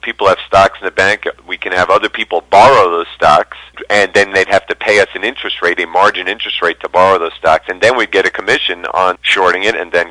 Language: English